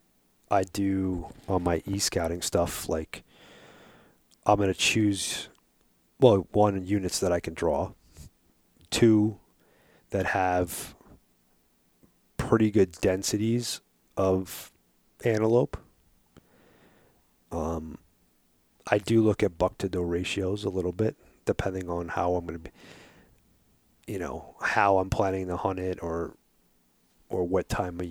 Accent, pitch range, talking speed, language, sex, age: American, 85-100 Hz, 125 wpm, English, male, 30-49